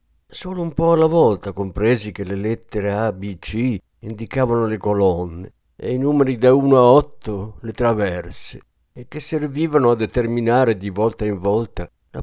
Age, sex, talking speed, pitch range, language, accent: 50-69, male, 165 wpm, 100-130 Hz, Italian, native